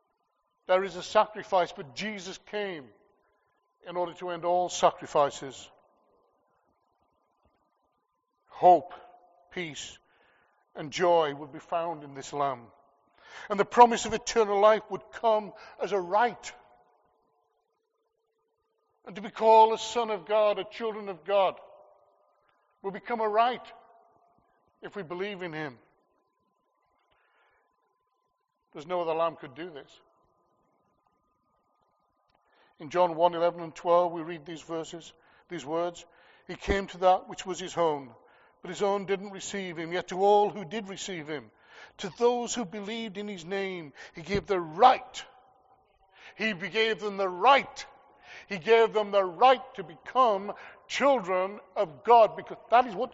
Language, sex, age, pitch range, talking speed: English, male, 60-79, 175-225 Hz, 140 wpm